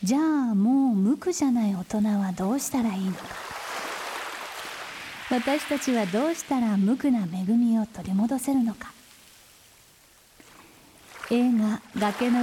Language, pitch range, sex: Japanese, 210-270 Hz, female